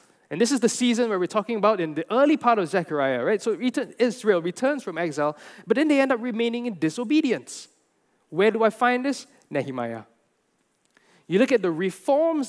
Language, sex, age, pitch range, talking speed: English, male, 20-39, 140-215 Hz, 190 wpm